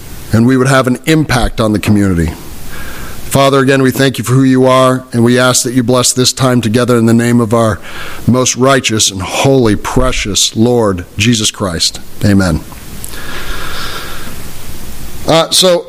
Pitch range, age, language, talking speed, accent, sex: 120-150 Hz, 40-59, English, 160 wpm, American, male